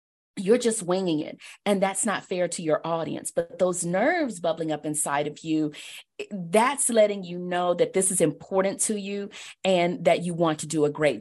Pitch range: 155-210 Hz